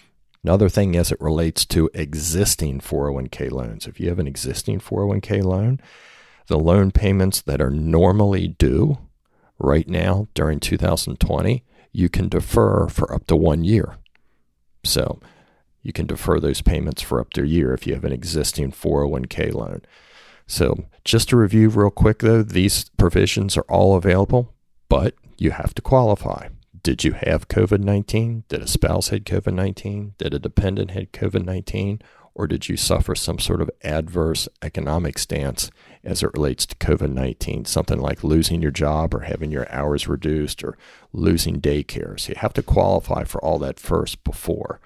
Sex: male